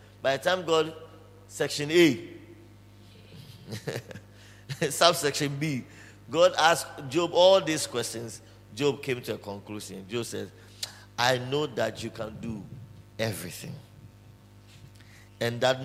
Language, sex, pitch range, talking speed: English, male, 105-155 Hz, 115 wpm